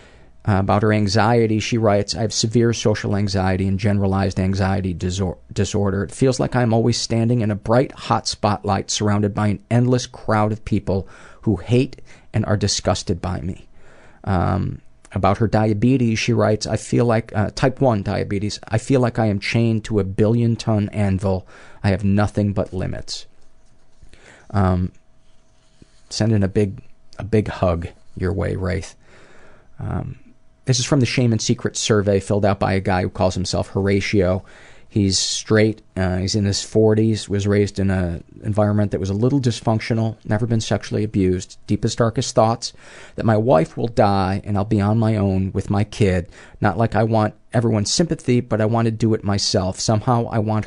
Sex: male